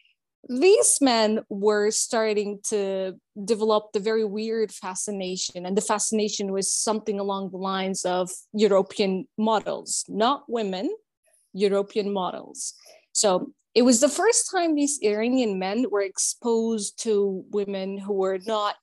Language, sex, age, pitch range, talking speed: English, female, 20-39, 195-250 Hz, 130 wpm